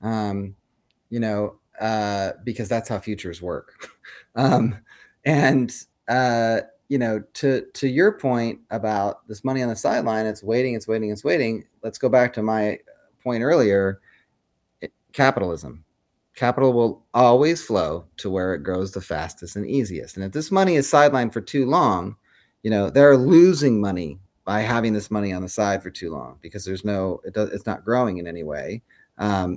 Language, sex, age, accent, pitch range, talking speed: English, male, 30-49, American, 95-130 Hz, 170 wpm